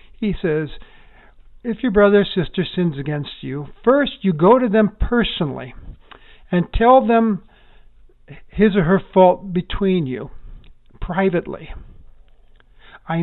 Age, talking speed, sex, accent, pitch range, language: 60-79, 125 wpm, male, American, 160-210 Hz, English